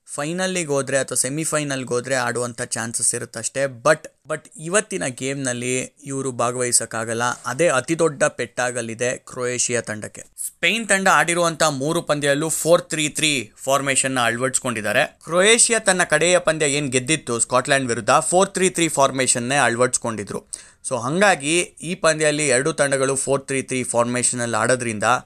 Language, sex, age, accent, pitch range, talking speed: Kannada, male, 20-39, native, 125-165 Hz, 125 wpm